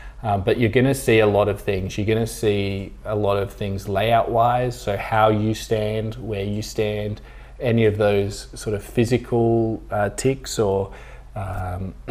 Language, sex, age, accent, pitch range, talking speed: English, male, 20-39, Australian, 100-115 Hz, 180 wpm